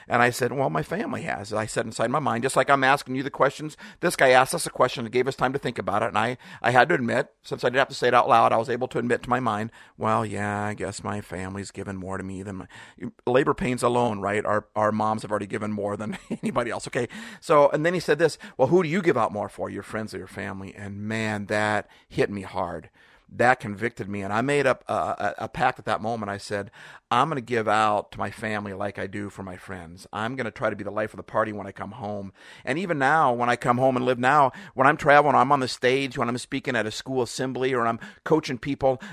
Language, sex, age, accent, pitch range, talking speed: English, male, 50-69, American, 110-145 Hz, 275 wpm